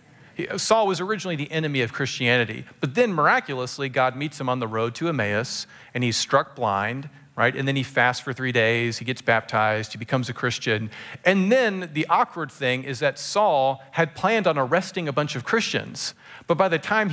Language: English